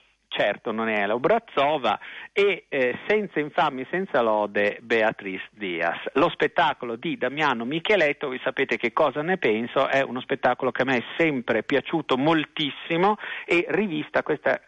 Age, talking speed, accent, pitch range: 50-69, 150 wpm, native, 125-160 Hz